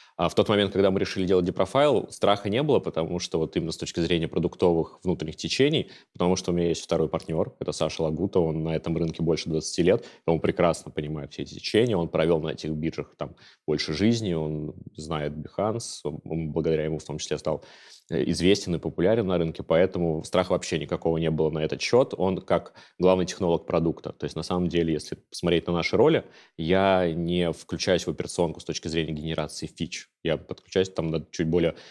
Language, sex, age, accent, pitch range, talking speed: Russian, male, 20-39, native, 80-95 Hz, 200 wpm